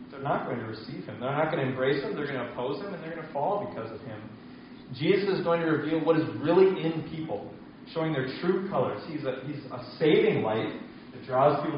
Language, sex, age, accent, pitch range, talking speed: English, male, 20-39, American, 130-165 Hz, 240 wpm